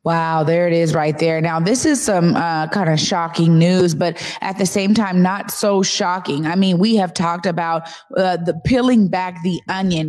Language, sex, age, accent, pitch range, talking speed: English, female, 20-39, American, 175-220 Hz, 200 wpm